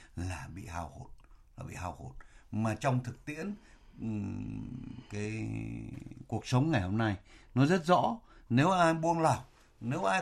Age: 60-79